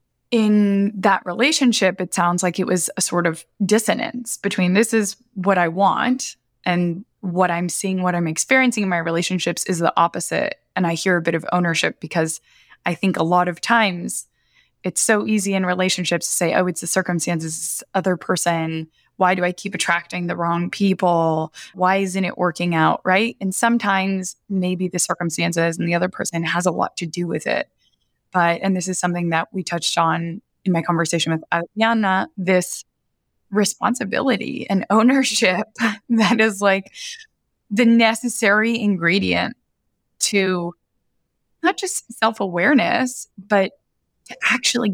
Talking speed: 160 wpm